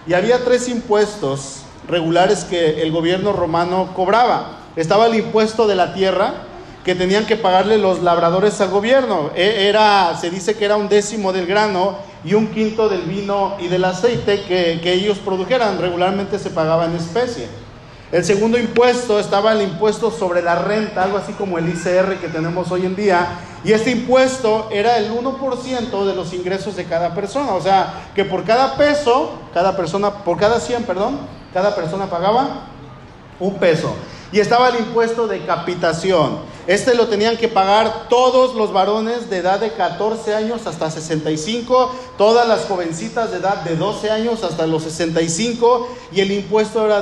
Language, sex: Spanish, male